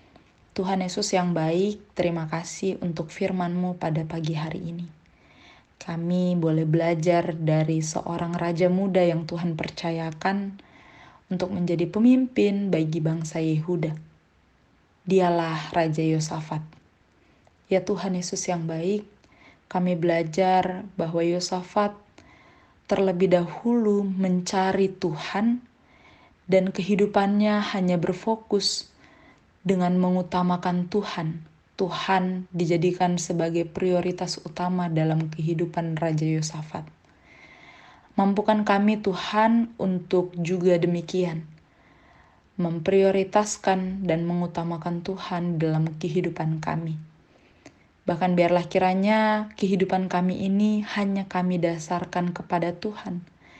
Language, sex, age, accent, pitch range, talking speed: Indonesian, female, 20-39, native, 165-190 Hz, 95 wpm